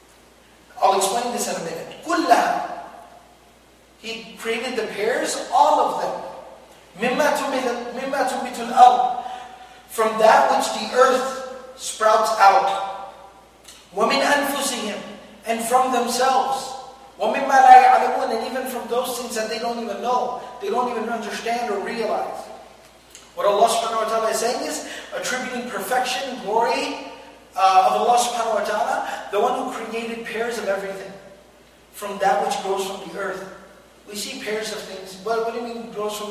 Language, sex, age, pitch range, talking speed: Malay, male, 40-59, 215-255 Hz, 155 wpm